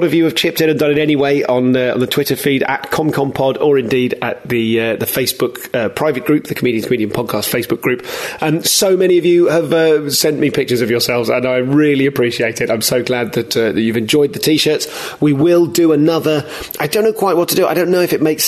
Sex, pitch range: male, 115-150 Hz